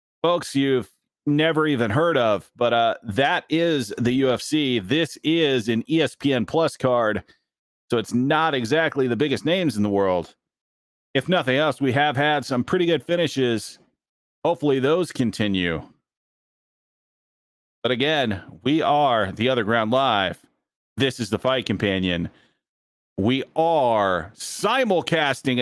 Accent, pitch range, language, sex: American, 125-170 Hz, English, male